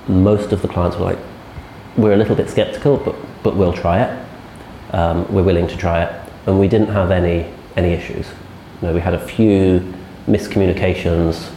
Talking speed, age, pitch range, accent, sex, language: 185 wpm, 30-49, 80-95 Hz, British, male, English